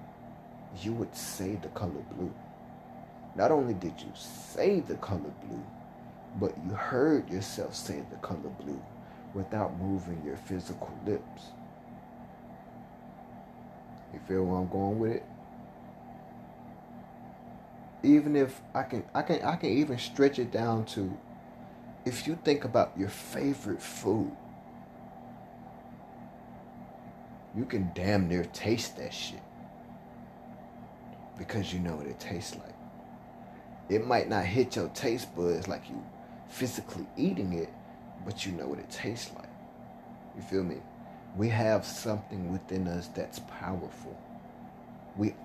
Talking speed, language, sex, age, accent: 130 wpm, English, male, 30-49, American